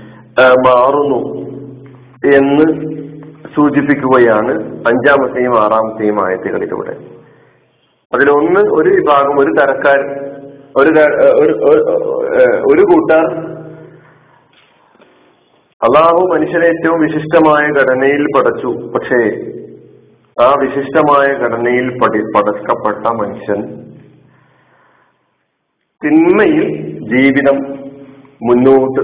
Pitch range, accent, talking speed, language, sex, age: 115-155 Hz, native, 60 wpm, Malayalam, male, 50-69